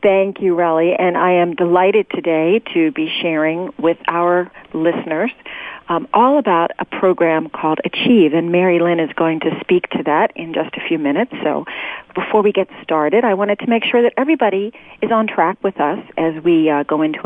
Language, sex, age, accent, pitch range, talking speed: English, female, 40-59, American, 165-235 Hz, 200 wpm